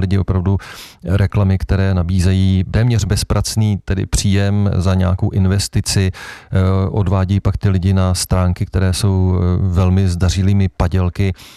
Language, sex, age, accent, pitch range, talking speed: Czech, male, 40-59, native, 90-100 Hz, 120 wpm